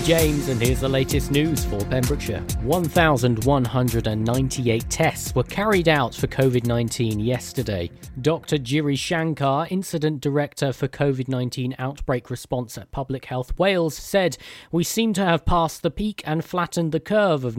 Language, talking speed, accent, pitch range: English, 145 wpm, British, 120-160 Hz